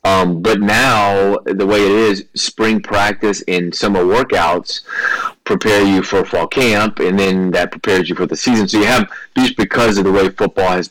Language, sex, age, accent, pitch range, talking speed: English, male, 30-49, American, 85-100 Hz, 195 wpm